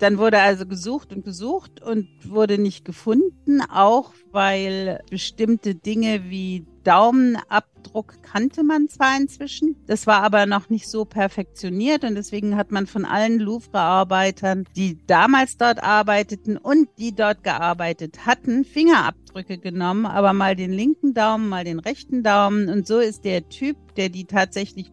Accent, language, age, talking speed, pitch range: German, German, 50-69, 150 wpm, 190-225 Hz